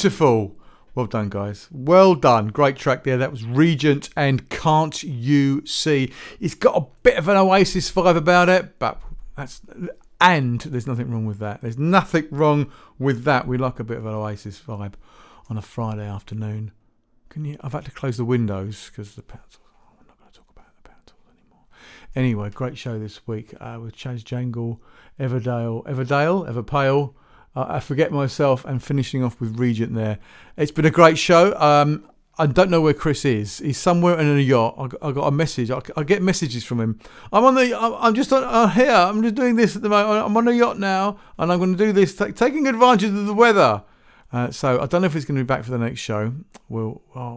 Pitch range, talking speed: 120-175 Hz, 215 wpm